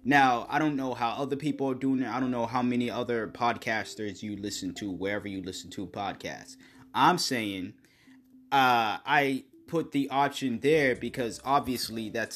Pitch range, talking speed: 110-135 Hz, 175 wpm